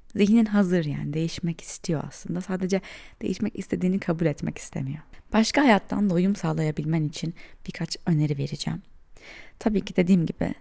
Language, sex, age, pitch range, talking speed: Turkish, female, 20-39, 170-225 Hz, 135 wpm